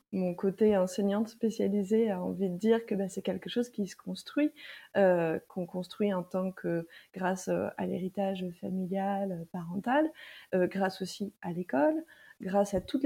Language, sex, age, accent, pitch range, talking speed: French, female, 20-39, French, 185-230 Hz, 160 wpm